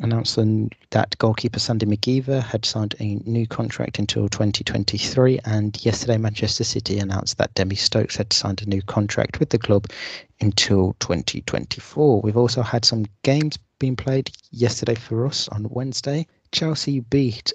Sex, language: male, English